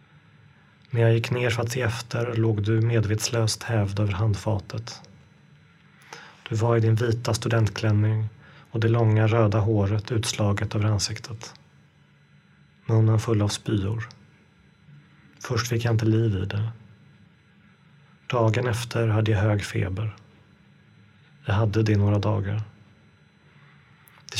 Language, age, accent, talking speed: Swedish, 30-49, native, 130 wpm